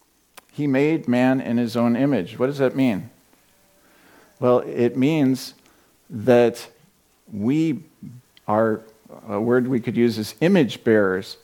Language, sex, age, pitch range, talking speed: English, male, 50-69, 120-150 Hz, 130 wpm